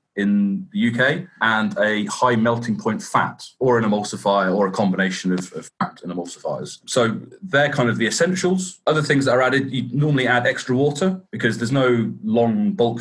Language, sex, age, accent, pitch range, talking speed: English, male, 30-49, British, 105-155 Hz, 190 wpm